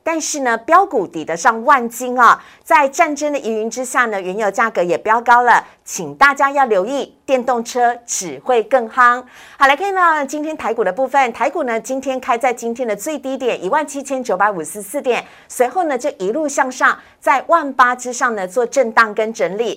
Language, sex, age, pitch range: Chinese, female, 50-69, 230-290 Hz